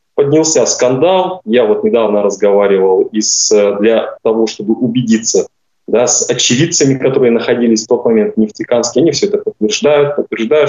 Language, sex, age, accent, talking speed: Russian, male, 20-39, native, 135 wpm